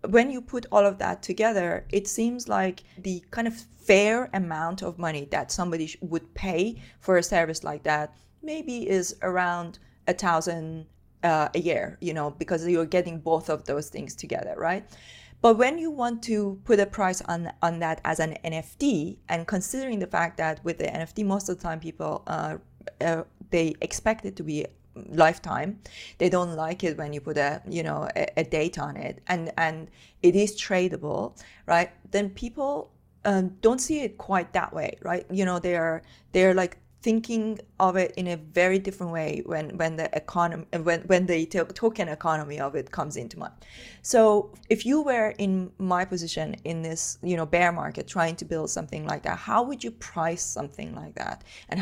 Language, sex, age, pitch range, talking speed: English, female, 30-49, 165-200 Hz, 190 wpm